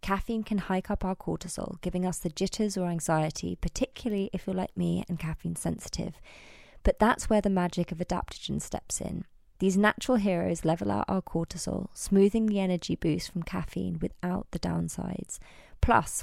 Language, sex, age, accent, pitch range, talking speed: English, female, 20-39, British, 165-195 Hz, 170 wpm